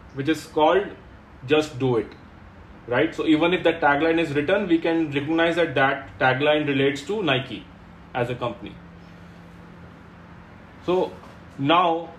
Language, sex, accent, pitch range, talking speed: English, male, Indian, 115-165 Hz, 140 wpm